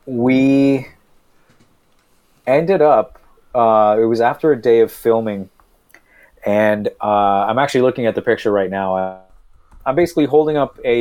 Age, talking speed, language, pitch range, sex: 30-49, 145 wpm, English, 105-120 Hz, male